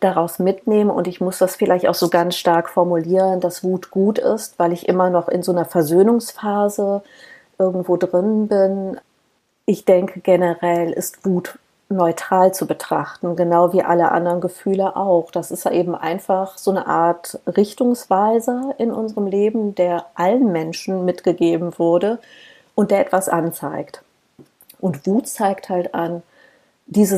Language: German